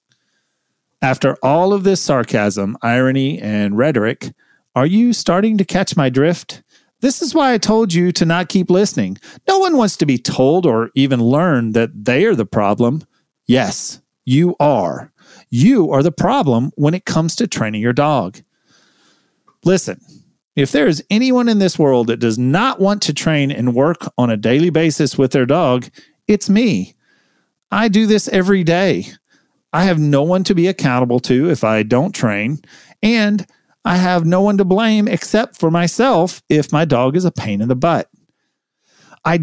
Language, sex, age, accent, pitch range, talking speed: English, male, 40-59, American, 135-195 Hz, 175 wpm